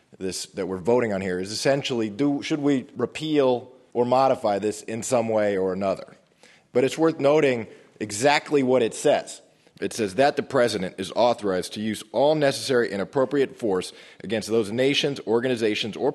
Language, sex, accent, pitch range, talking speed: English, male, American, 105-135 Hz, 165 wpm